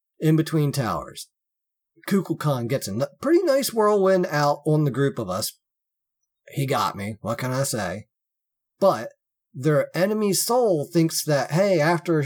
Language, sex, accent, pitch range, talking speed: English, male, American, 135-170 Hz, 150 wpm